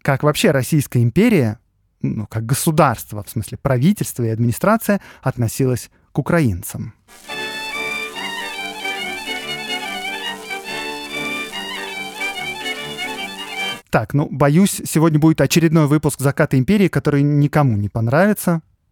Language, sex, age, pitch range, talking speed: Russian, male, 30-49, 120-185 Hz, 90 wpm